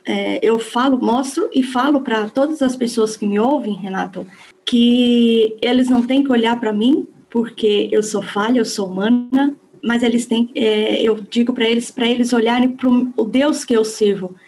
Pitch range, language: 210-245 Hz, Portuguese